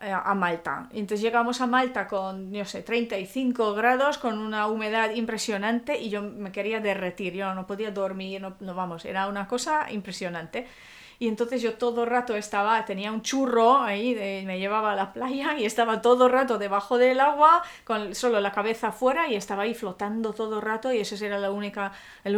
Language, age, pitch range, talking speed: Spanish, 30-49, 205-245 Hz, 195 wpm